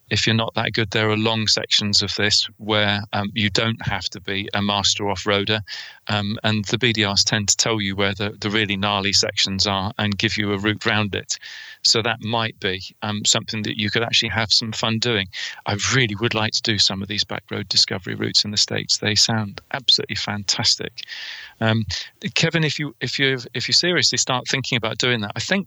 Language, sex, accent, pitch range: English, male, British, 105-120 Hz